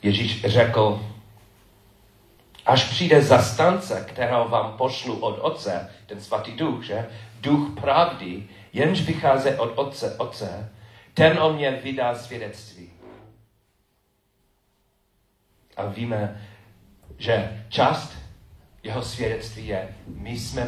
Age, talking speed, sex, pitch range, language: 40-59, 100 wpm, male, 100-120 Hz, Czech